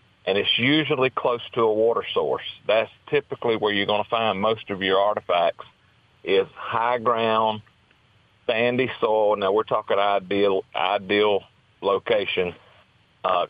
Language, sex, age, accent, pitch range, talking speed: English, male, 40-59, American, 100-140 Hz, 140 wpm